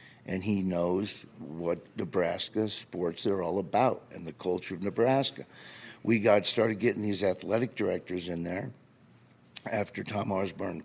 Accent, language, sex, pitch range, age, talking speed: American, English, male, 105-135 Hz, 50-69, 145 wpm